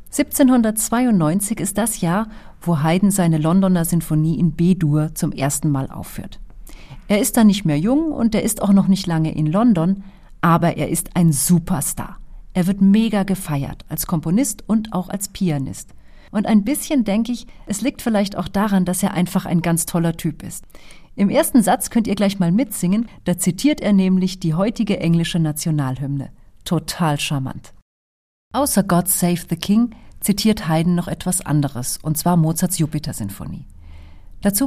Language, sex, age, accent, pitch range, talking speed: German, female, 40-59, German, 160-210 Hz, 165 wpm